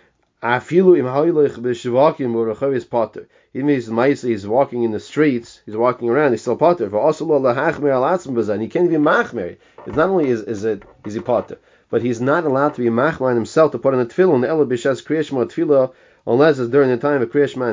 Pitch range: 110-140 Hz